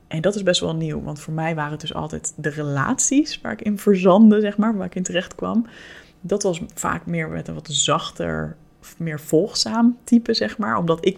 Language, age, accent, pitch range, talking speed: Dutch, 20-39, Dutch, 160-205 Hz, 220 wpm